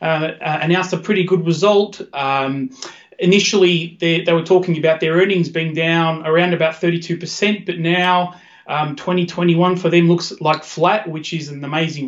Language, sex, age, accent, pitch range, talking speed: English, male, 30-49, Australian, 160-185 Hz, 170 wpm